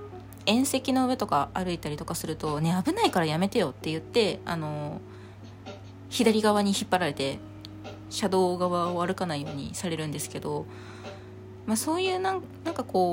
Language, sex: Japanese, female